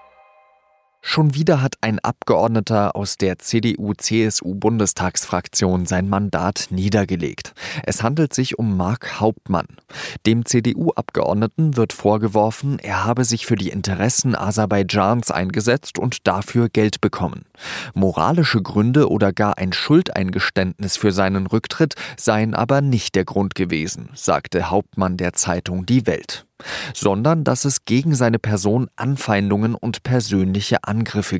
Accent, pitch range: German, 95-125 Hz